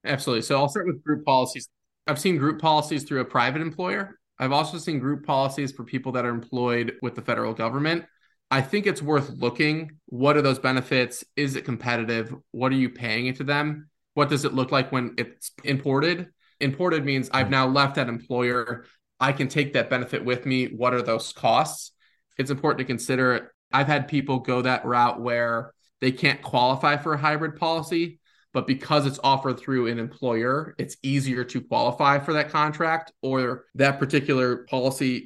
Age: 20-39